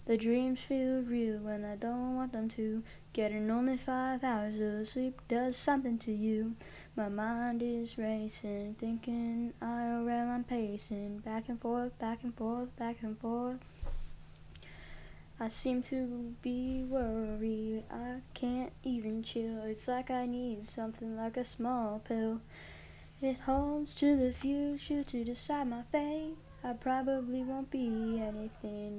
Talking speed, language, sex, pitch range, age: 145 wpm, English, female, 220-245 Hz, 10-29